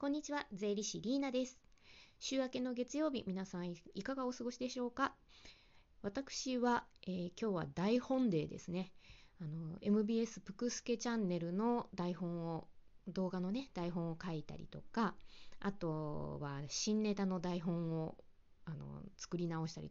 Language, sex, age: Japanese, female, 20-39